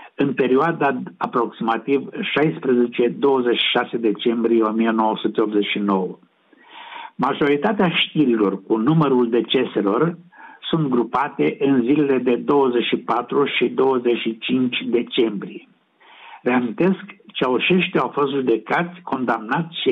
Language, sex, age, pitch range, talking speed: Romanian, male, 60-79, 115-155 Hz, 80 wpm